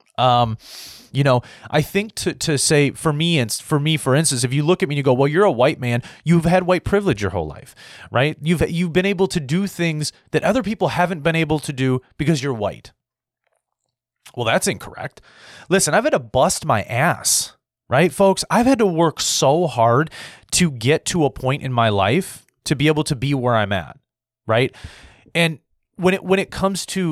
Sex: male